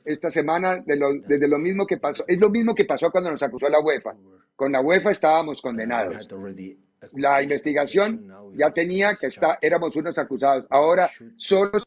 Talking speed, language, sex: 180 wpm, Spanish, male